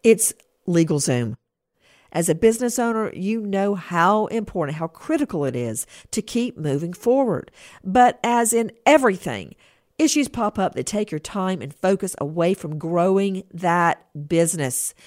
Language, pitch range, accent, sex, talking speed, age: English, 170-240 Hz, American, female, 145 wpm, 50-69